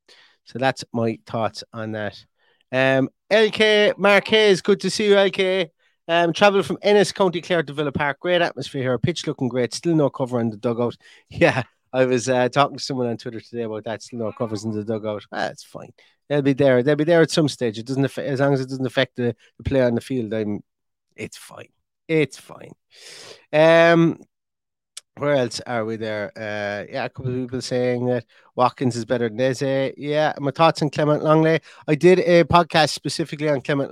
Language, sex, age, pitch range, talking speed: English, male, 30-49, 120-145 Hz, 205 wpm